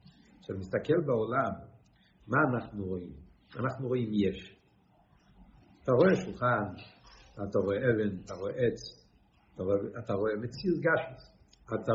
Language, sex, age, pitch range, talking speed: Hebrew, male, 60-79, 115-165 Hz, 115 wpm